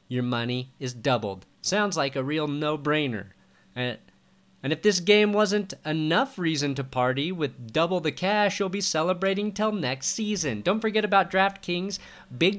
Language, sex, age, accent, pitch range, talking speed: English, male, 30-49, American, 140-195 Hz, 155 wpm